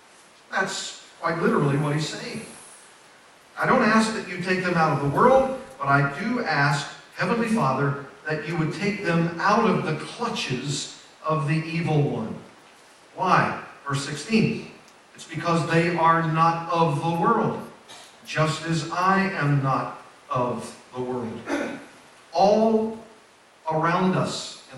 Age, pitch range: 50-69, 150-190 Hz